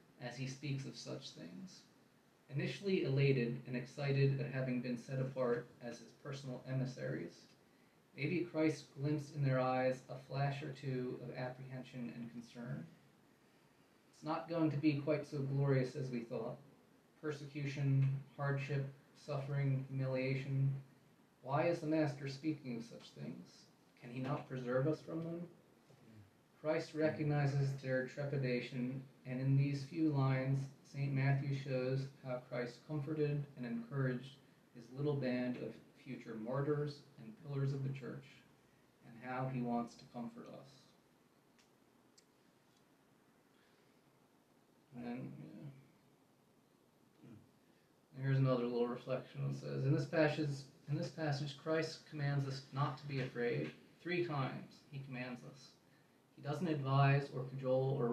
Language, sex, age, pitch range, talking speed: English, male, 20-39, 125-145 Hz, 135 wpm